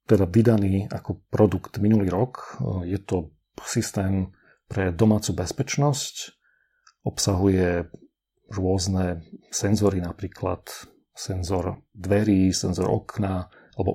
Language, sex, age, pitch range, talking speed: Slovak, male, 40-59, 95-110 Hz, 90 wpm